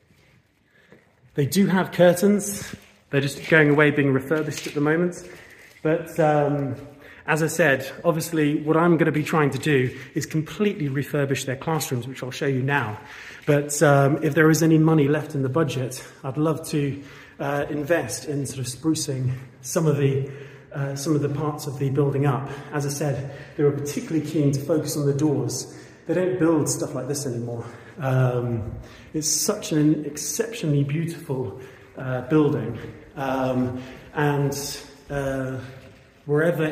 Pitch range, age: 135-155 Hz, 30-49